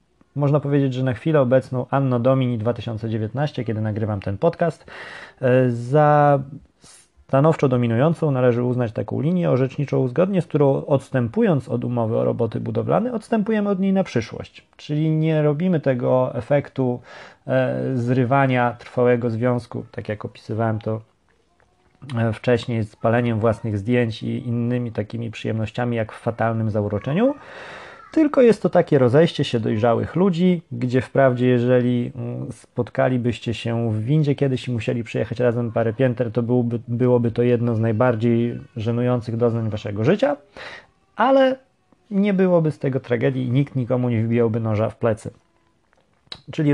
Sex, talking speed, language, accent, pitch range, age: male, 135 wpm, Polish, native, 115-150 Hz, 30-49